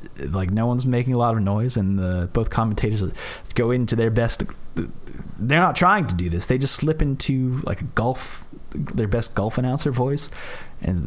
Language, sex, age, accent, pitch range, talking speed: English, male, 30-49, American, 90-120 Hz, 190 wpm